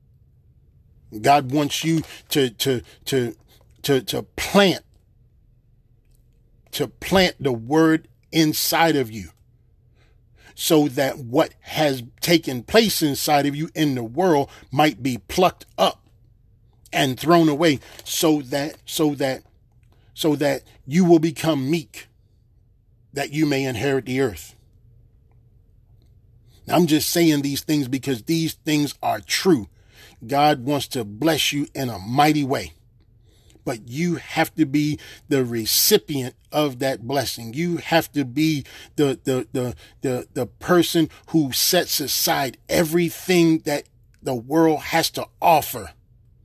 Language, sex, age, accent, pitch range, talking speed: English, male, 40-59, American, 115-150 Hz, 130 wpm